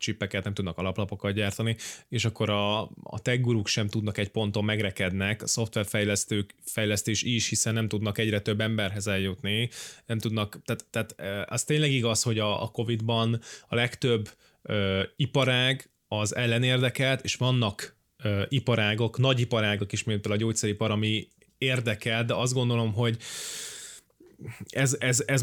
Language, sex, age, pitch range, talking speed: Hungarian, male, 20-39, 105-125 Hz, 140 wpm